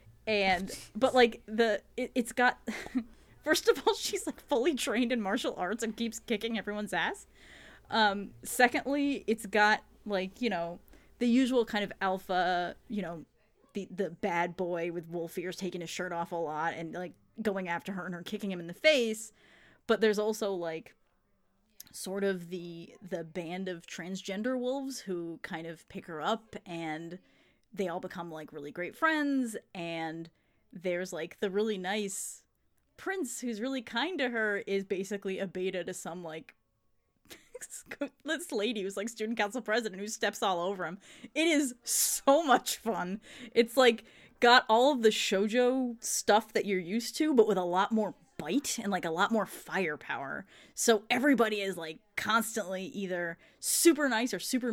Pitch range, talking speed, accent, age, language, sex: 185-245 Hz, 170 wpm, American, 30-49, English, female